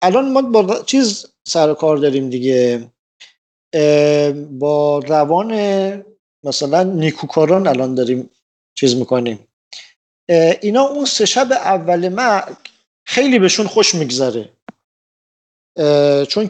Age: 50-69